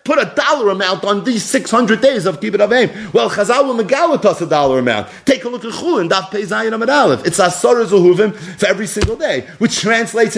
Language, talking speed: English, 200 wpm